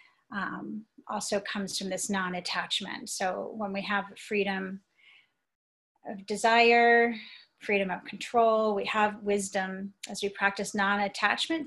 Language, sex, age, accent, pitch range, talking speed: English, female, 30-49, American, 195-220 Hz, 120 wpm